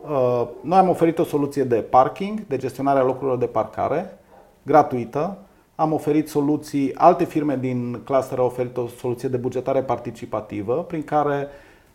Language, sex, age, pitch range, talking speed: Romanian, male, 30-49, 125-170 Hz, 145 wpm